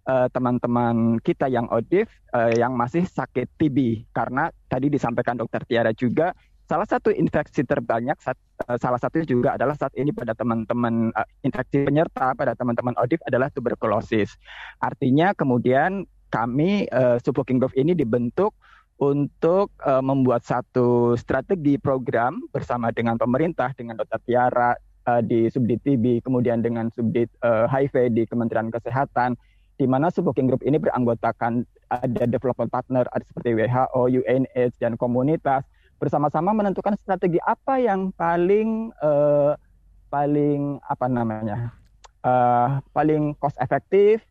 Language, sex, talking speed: Indonesian, male, 135 wpm